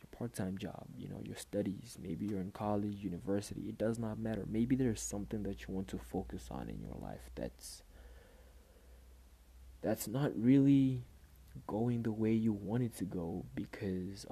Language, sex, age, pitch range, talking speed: English, male, 20-39, 65-110 Hz, 170 wpm